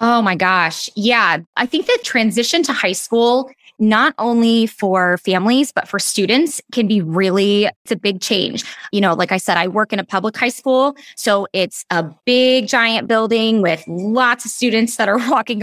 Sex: female